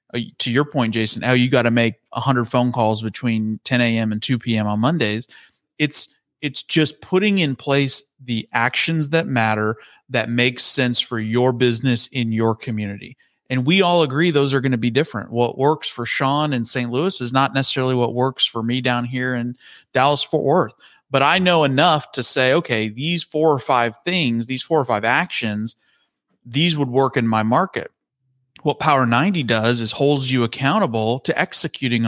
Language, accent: English, American